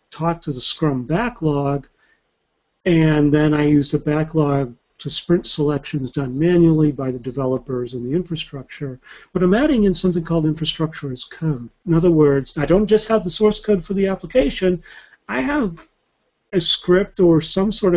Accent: American